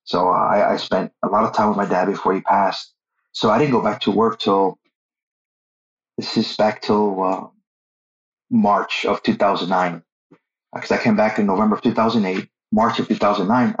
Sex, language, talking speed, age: male, English, 180 wpm, 30-49